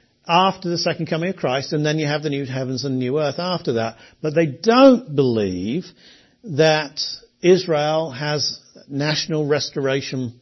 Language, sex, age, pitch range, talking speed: English, male, 50-69, 120-160 Hz, 155 wpm